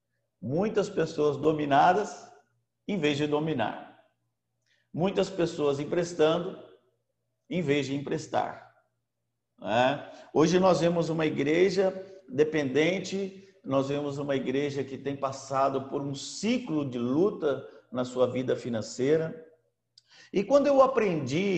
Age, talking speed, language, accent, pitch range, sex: 50-69, 110 wpm, Portuguese, Brazilian, 135-185 Hz, male